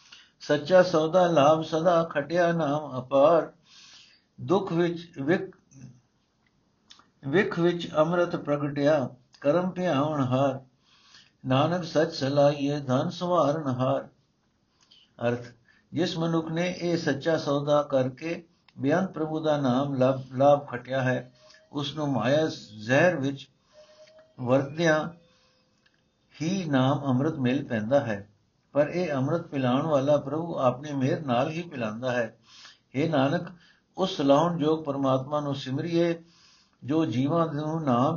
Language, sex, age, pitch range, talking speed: Punjabi, male, 60-79, 130-170 Hz, 110 wpm